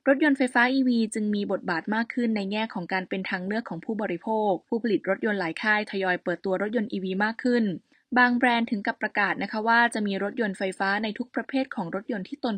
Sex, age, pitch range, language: female, 20-39, 195-235 Hz, Thai